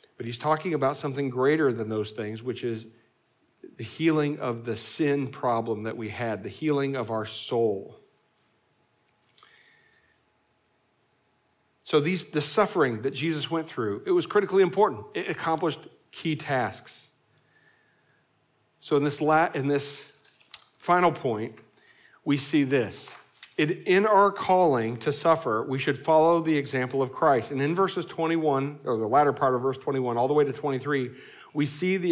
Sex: male